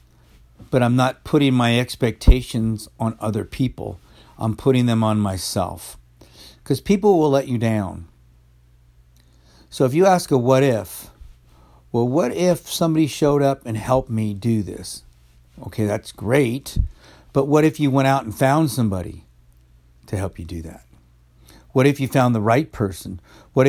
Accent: American